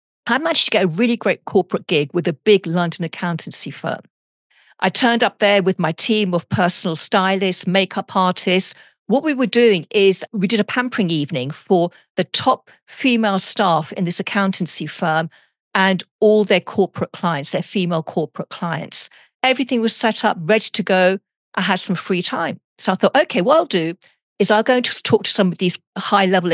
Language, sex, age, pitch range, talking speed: English, female, 50-69, 185-245 Hz, 190 wpm